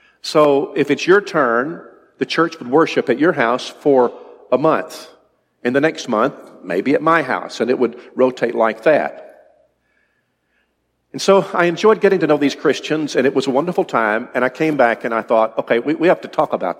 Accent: American